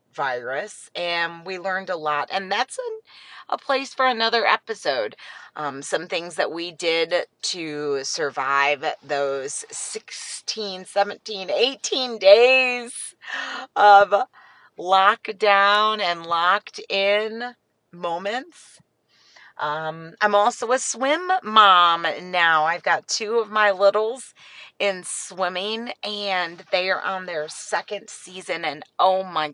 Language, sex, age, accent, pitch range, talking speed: English, female, 40-59, American, 150-210 Hz, 120 wpm